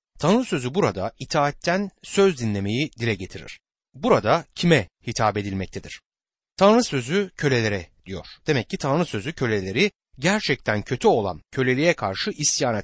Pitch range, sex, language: 110-175 Hz, male, Turkish